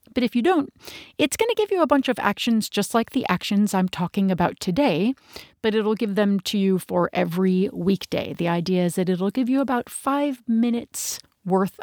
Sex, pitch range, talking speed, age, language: female, 180-240 Hz, 210 wpm, 40-59, English